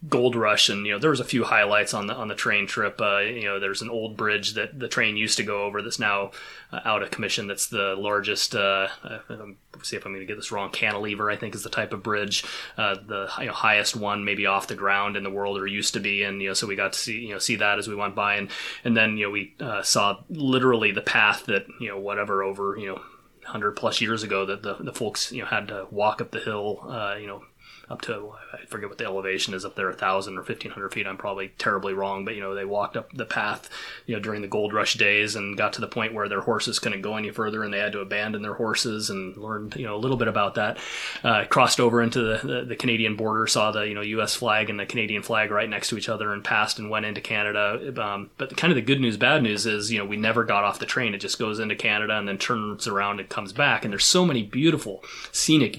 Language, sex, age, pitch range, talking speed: English, male, 20-39, 100-115 Hz, 270 wpm